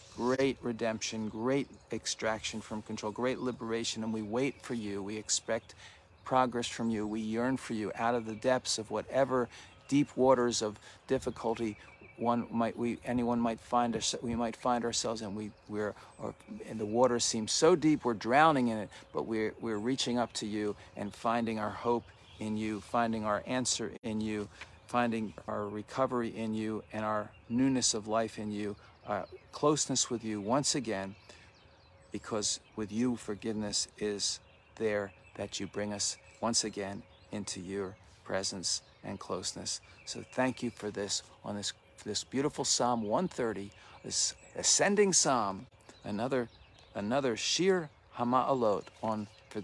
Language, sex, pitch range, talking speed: English, male, 100-120 Hz, 155 wpm